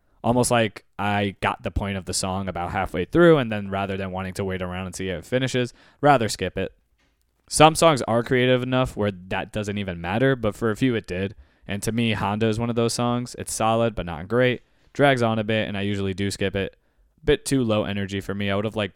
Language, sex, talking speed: English, male, 245 wpm